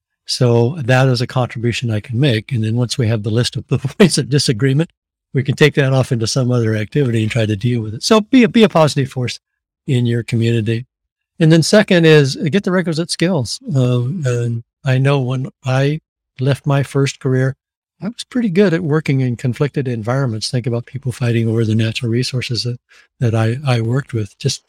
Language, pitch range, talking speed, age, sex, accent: English, 120-140 Hz, 210 wpm, 60-79, male, American